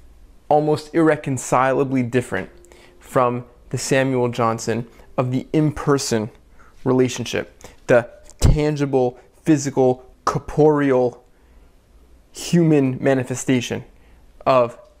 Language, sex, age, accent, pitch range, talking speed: English, male, 20-39, American, 125-150 Hz, 70 wpm